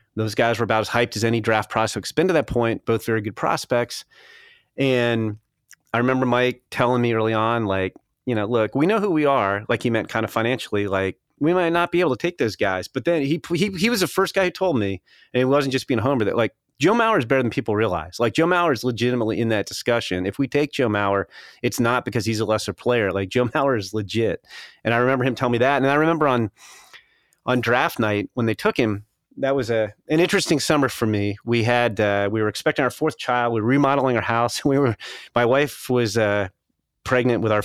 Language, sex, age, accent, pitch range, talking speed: English, male, 30-49, American, 110-135 Hz, 245 wpm